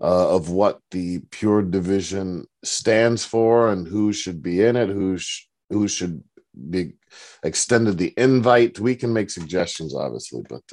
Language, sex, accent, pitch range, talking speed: English, male, American, 95-125 Hz, 155 wpm